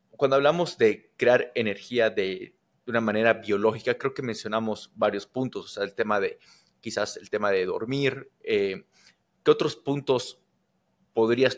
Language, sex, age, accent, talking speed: Spanish, male, 30-49, Mexican, 155 wpm